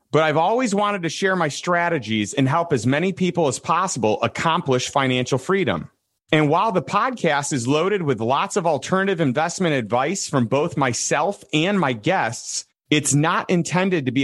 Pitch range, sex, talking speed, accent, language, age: 130-180 Hz, male, 175 wpm, American, English, 30-49